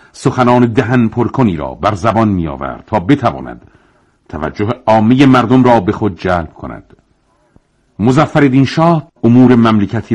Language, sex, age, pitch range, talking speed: Persian, male, 50-69, 95-125 Hz, 125 wpm